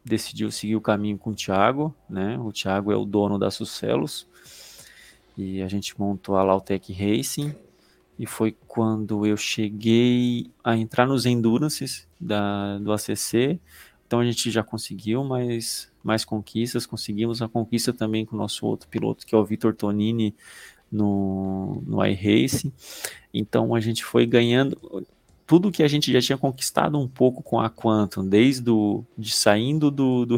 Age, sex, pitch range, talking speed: 20-39, male, 105-125 Hz, 150 wpm